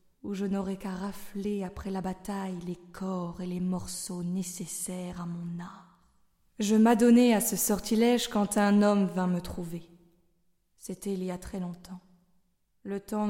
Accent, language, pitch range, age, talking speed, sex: French, French, 180-215 Hz, 20-39, 165 wpm, female